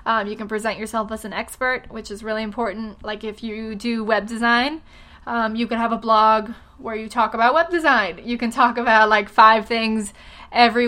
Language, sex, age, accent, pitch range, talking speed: English, female, 10-29, American, 215-245 Hz, 210 wpm